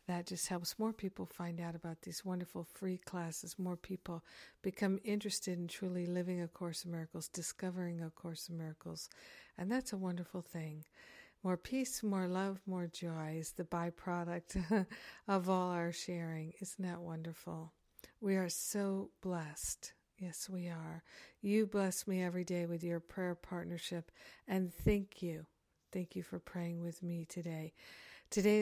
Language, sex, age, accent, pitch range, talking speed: English, female, 60-79, American, 170-190 Hz, 160 wpm